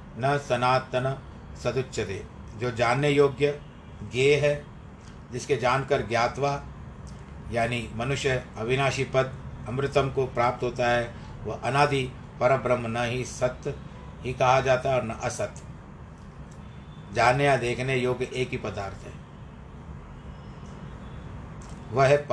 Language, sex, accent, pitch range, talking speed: Hindi, male, native, 120-145 Hz, 115 wpm